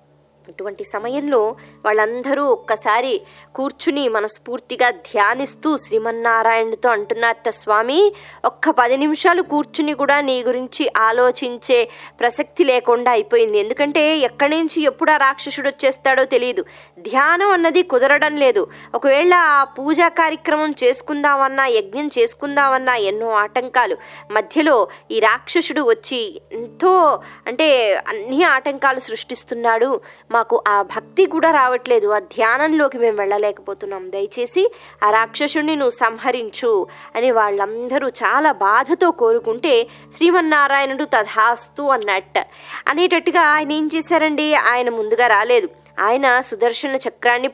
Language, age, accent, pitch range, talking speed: Telugu, 20-39, native, 235-335 Hz, 105 wpm